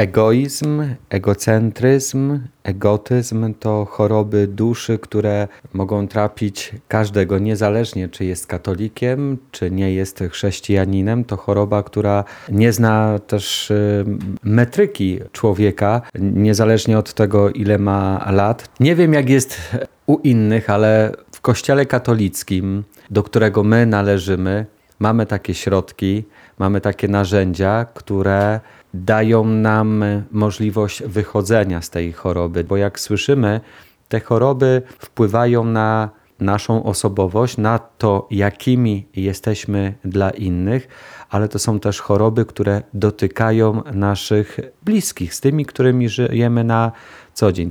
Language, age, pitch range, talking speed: Polish, 30-49, 100-115 Hz, 115 wpm